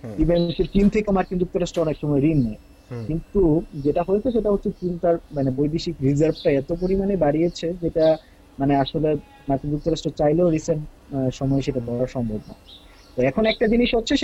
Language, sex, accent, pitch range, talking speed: English, male, Indian, 145-190 Hz, 175 wpm